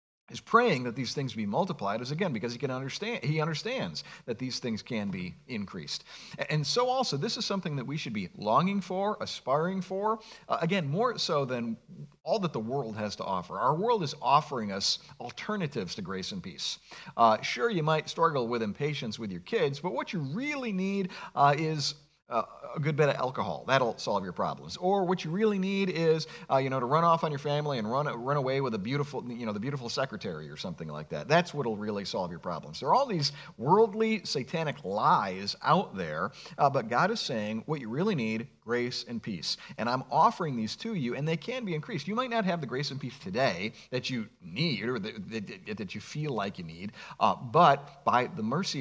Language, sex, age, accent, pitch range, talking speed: English, male, 40-59, American, 125-190 Hz, 220 wpm